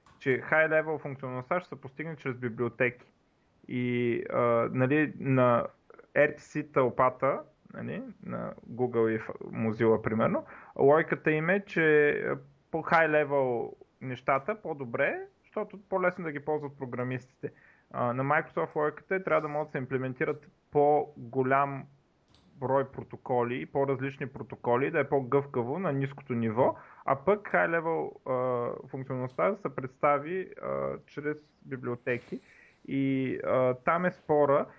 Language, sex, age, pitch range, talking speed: Bulgarian, male, 30-49, 125-155 Hz, 120 wpm